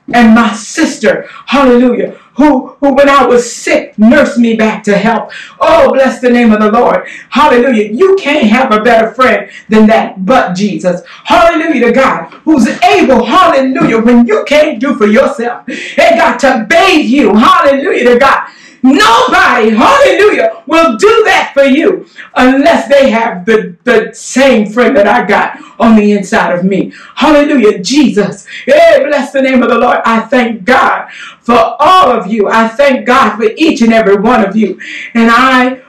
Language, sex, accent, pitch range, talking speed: English, female, American, 230-340 Hz, 170 wpm